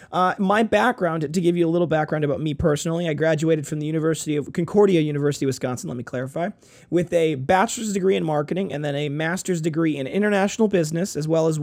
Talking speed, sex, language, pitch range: 215 wpm, male, English, 150-190 Hz